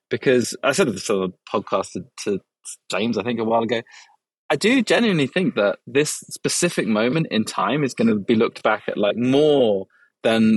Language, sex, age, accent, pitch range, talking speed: English, male, 20-39, British, 105-120 Hz, 195 wpm